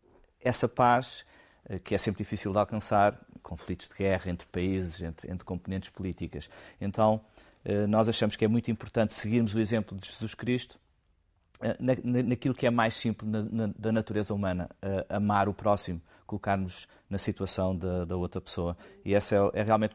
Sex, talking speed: male, 170 wpm